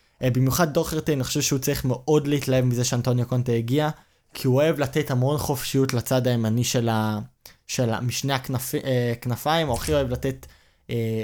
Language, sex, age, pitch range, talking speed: Hebrew, male, 20-39, 120-140 Hz, 165 wpm